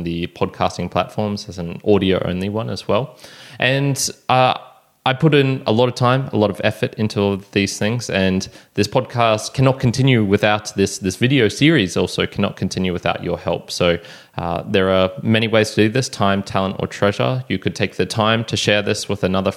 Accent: Australian